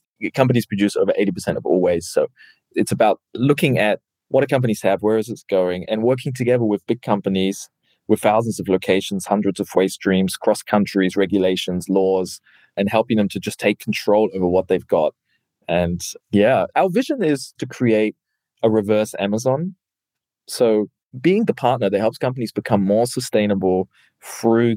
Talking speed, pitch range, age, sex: 165 wpm, 95-120 Hz, 20-39, male